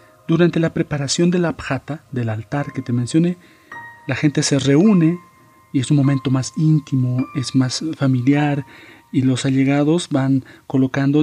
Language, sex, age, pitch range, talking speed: Spanish, male, 40-59, 130-160 Hz, 155 wpm